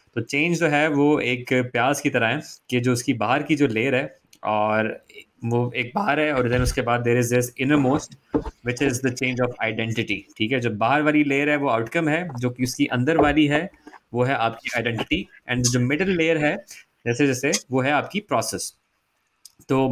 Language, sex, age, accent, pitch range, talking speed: Hindi, male, 20-39, native, 120-145 Hz, 210 wpm